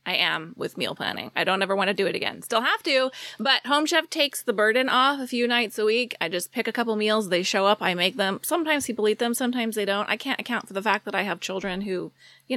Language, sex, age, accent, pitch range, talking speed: English, female, 20-39, American, 190-240 Hz, 280 wpm